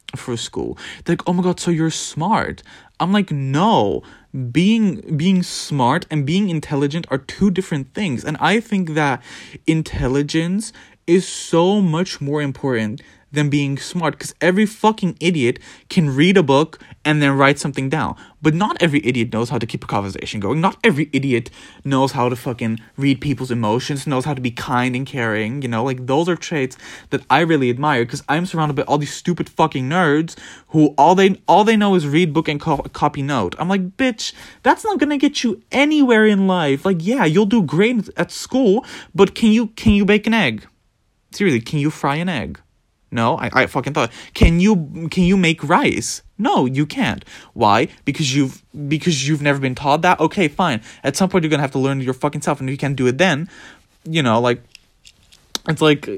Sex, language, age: male, English, 20-39